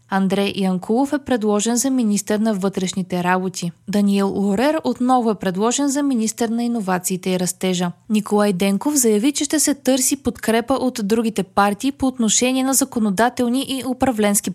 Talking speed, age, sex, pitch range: 155 wpm, 20-39, female, 195-265 Hz